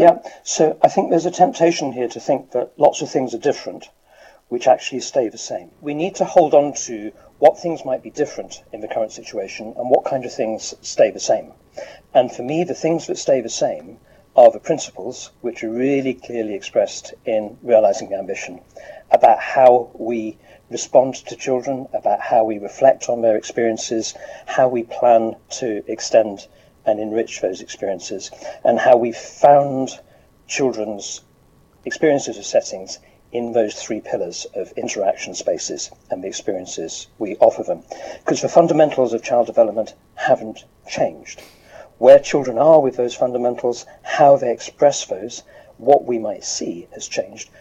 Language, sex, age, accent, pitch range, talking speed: English, male, 50-69, British, 120-150 Hz, 165 wpm